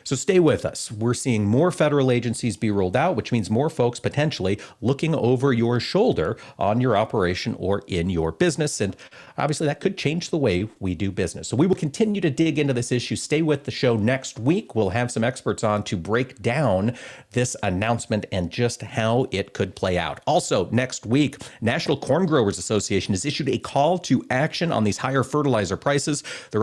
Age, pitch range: 40-59, 105-140 Hz